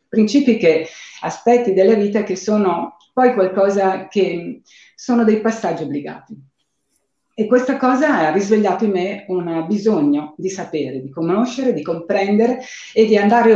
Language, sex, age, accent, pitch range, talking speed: Italian, female, 40-59, native, 165-240 Hz, 140 wpm